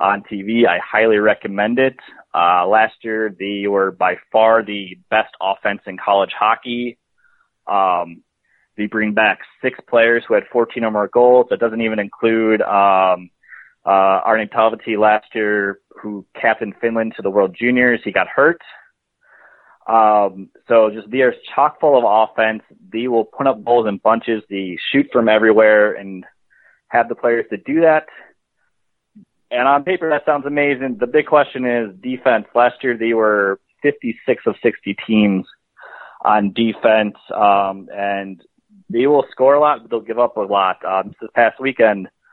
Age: 20-39